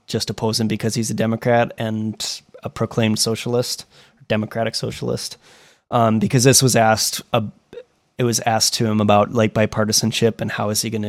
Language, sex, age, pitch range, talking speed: English, male, 20-39, 110-130 Hz, 175 wpm